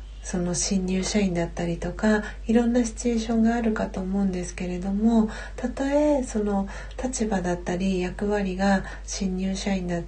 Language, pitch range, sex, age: Japanese, 175-225 Hz, female, 40-59